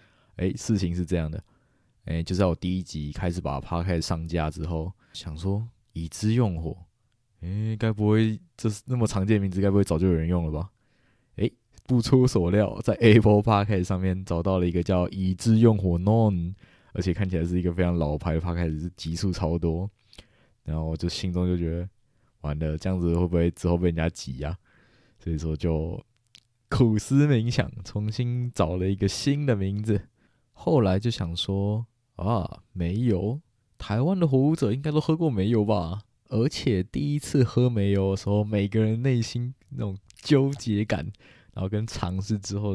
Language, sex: Chinese, male